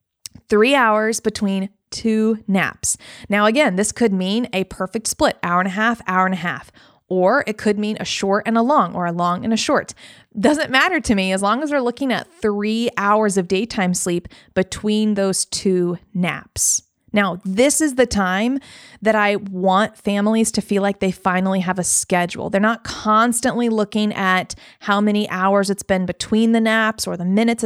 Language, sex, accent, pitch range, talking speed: English, female, American, 190-225 Hz, 190 wpm